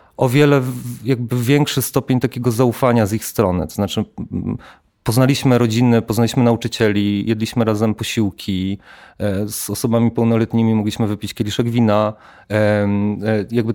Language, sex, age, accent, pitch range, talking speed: Polish, male, 30-49, native, 105-120 Hz, 120 wpm